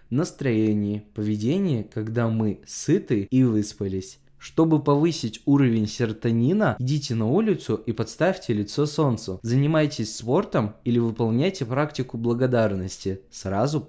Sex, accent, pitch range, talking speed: male, native, 110-145 Hz, 110 wpm